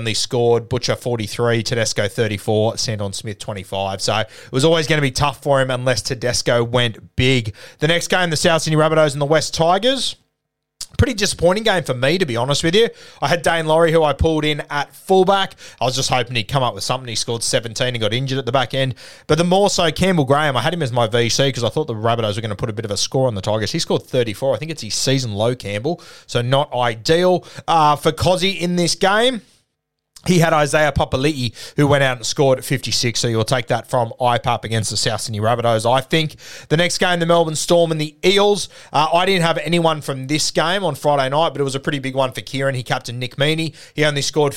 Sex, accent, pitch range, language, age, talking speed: male, Australian, 120-155 Hz, English, 20-39, 240 wpm